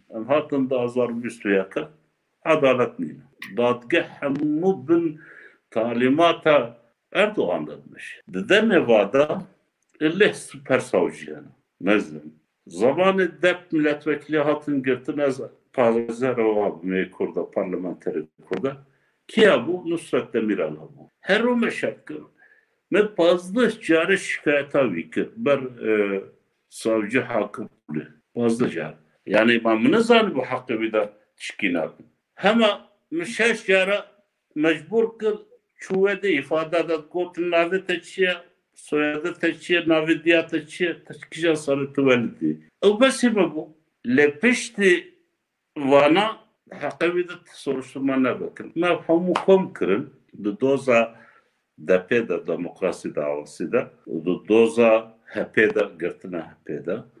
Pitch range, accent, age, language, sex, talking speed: 120-190 Hz, native, 60-79, Turkish, male, 70 wpm